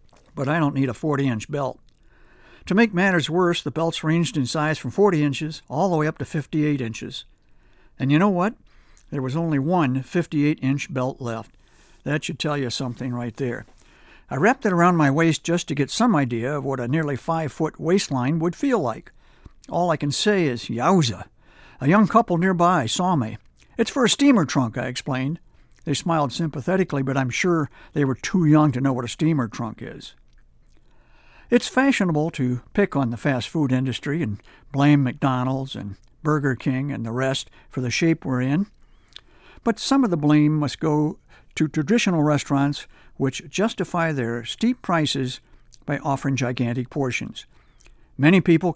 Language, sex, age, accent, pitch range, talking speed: English, male, 60-79, American, 130-170 Hz, 175 wpm